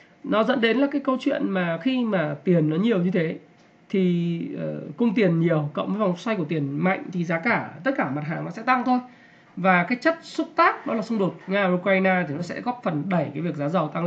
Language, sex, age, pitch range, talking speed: Vietnamese, male, 20-39, 165-215 Hz, 260 wpm